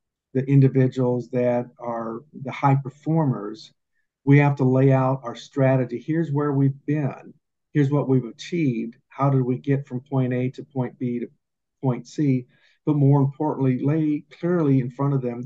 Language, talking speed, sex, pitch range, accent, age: English, 170 wpm, male, 125-140 Hz, American, 50-69